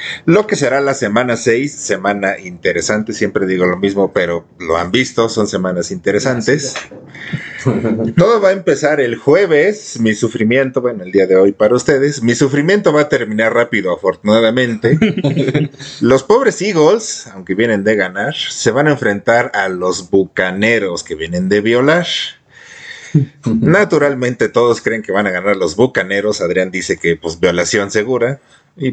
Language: Spanish